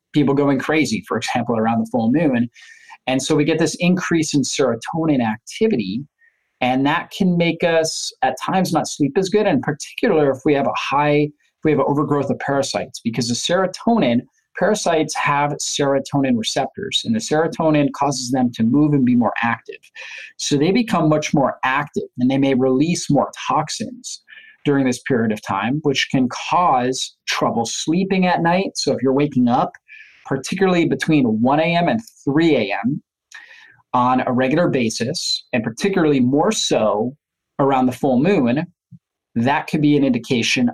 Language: English